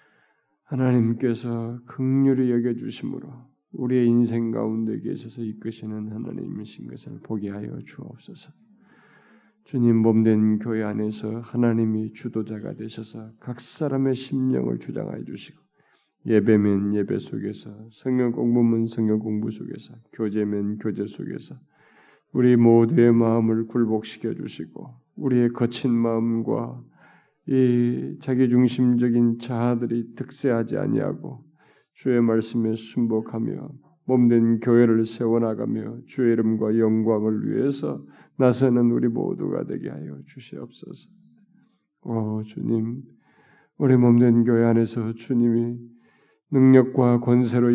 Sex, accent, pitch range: male, native, 110-130 Hz